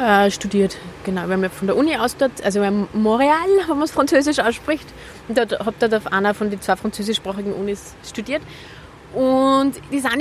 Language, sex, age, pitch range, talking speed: German, female, 20-39, 190-240 Hz, 195 wpm